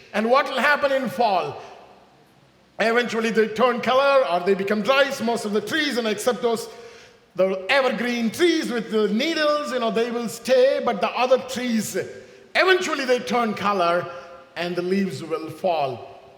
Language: English